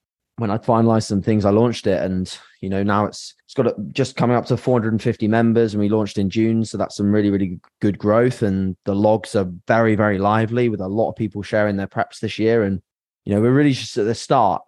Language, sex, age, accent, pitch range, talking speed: English, male, 20-39, British, 95-115 Hz, 260 wpm